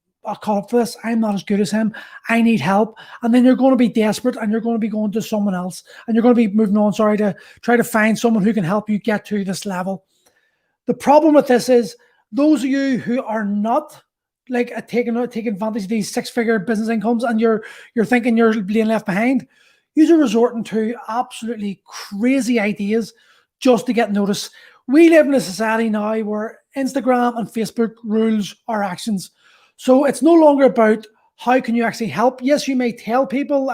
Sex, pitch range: male, 215-250 Hz